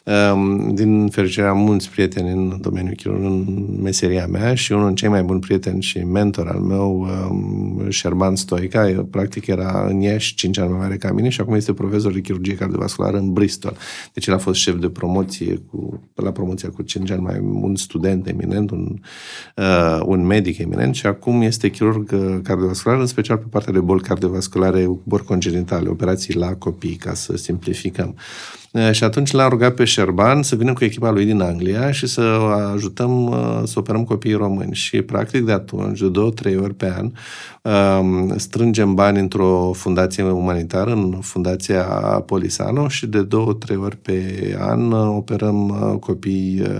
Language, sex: Romanian, male